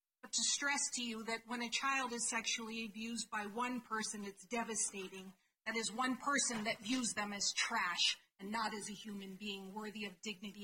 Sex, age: female, 40-59